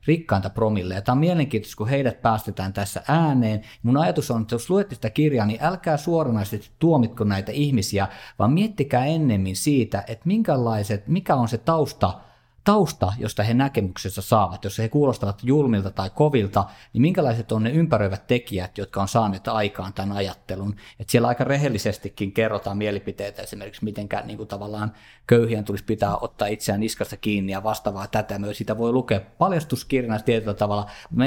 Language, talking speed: Finnish, 165 wpm